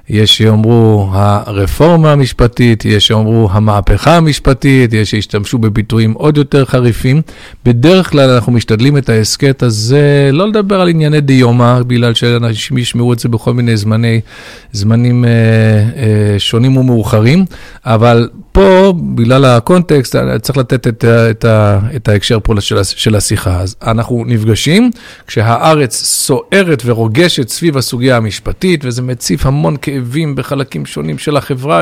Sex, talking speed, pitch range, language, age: male, 135 wpm, 115-145 Hz, Hebrew, 50-69